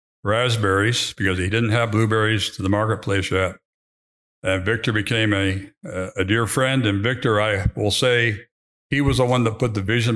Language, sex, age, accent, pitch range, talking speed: English, male, 60-79, American, 95-115 Hz, 175 wpm